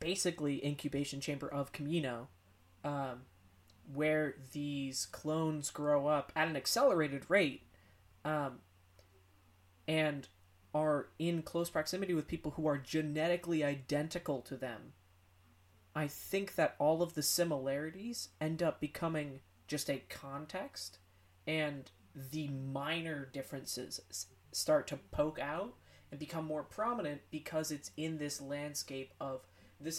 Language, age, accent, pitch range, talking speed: English, 20-39, American, 125-155 Hz, 120 wpm